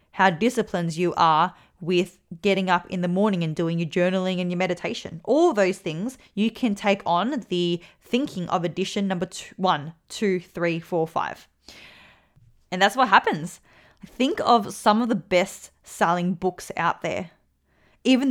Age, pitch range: 20-39, 175-215 Hz